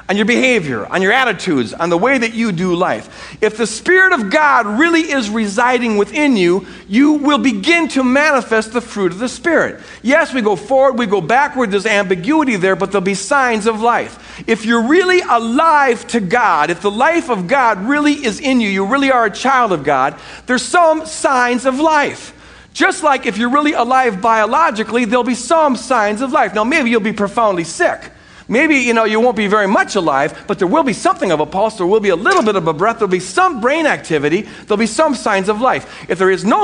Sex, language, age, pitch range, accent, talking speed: male, English, 50-69, 185-270 Hz, American, 225 wpm